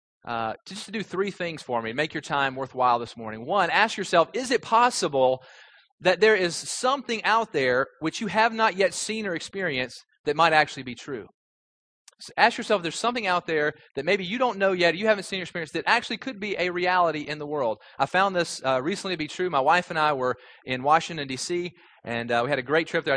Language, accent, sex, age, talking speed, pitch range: English, American, male, 30-49, 230 wpm, 130-185 Hz